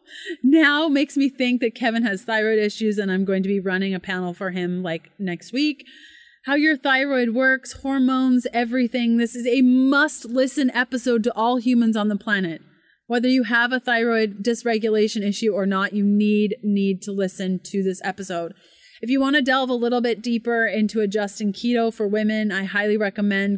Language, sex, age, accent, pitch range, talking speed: English, female, 30-49, American, 200-240 Hz, 190 wpm